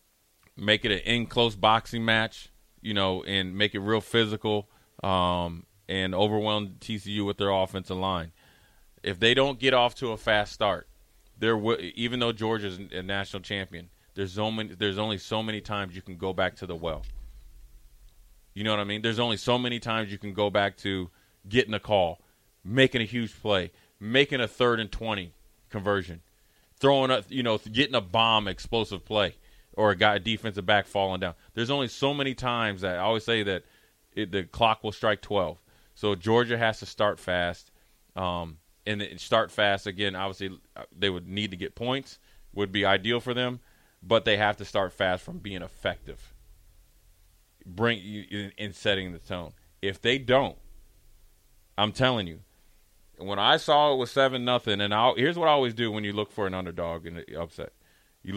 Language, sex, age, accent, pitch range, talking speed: English, male, 30-49, American, 95-115 Hz, 185 wpm